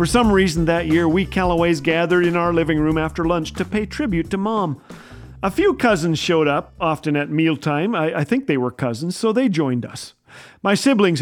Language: English